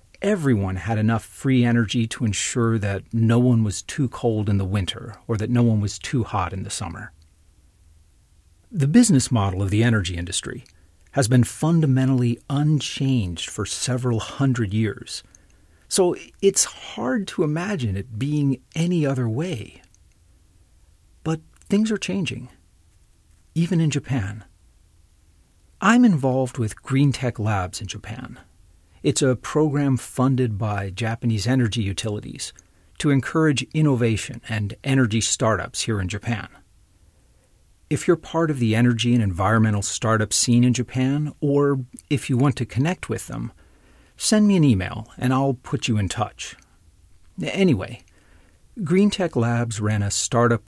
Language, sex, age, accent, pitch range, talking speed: English, male, 40-59, American, 95-135 Hz, 140 wpm